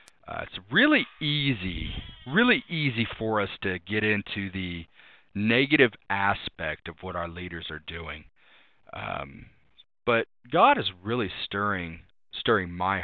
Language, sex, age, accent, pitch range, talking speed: English, male, 40-59, American, 90-125 Hz, 130 wpm